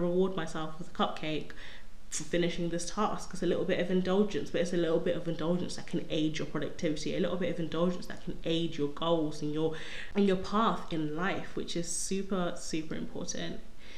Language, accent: English, British